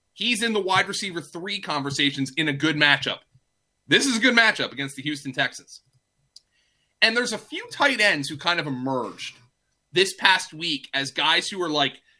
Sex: male